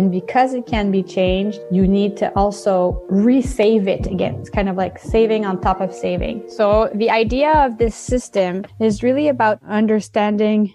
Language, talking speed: English, 180 wpm